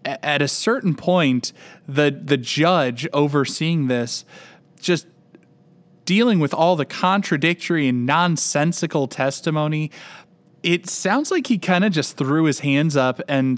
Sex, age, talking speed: male, 20-39, 135 wpm